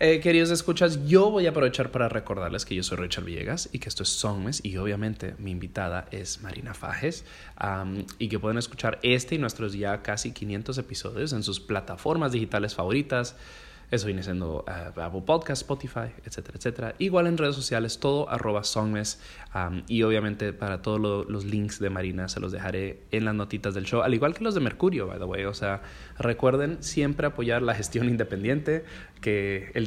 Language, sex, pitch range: English, male, 100-130 Hz